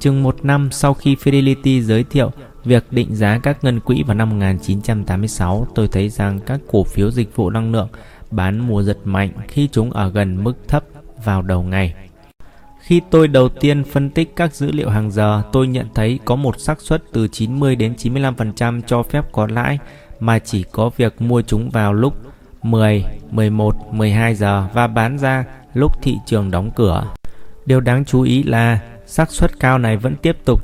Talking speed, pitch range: 190 wpm, 105-135 Hz